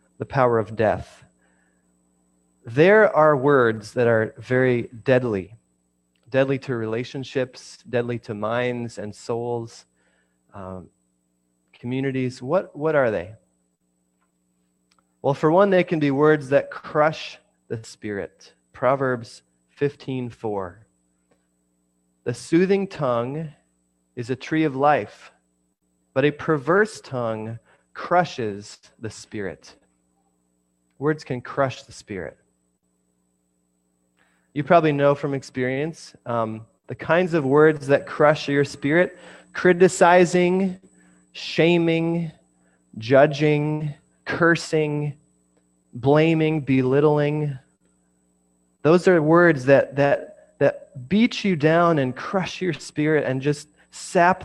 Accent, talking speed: American, 105 wpm